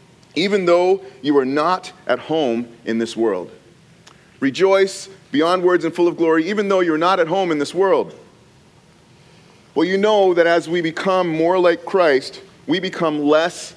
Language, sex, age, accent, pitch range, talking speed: English, male, 30-49, American, 155-195 Hz, 170 wpm